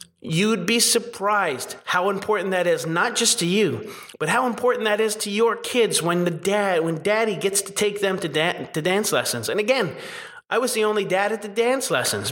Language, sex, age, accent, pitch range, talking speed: English, male, 30-49, American, 160-210 Hz, 215 wpm